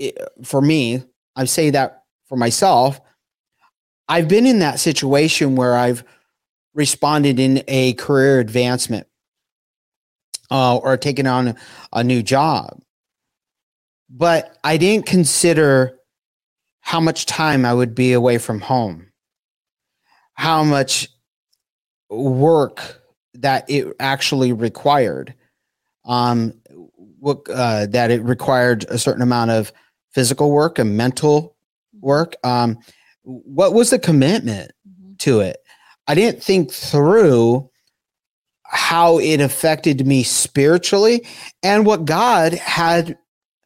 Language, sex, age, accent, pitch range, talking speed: English, male, 30-49, American, 125-165 Hz, 115 wpm